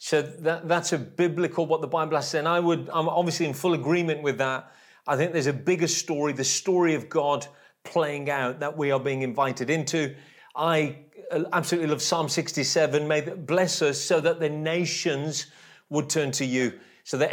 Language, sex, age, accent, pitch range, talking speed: English, male, 40-59, British, 150-175 Hz, 195 wpm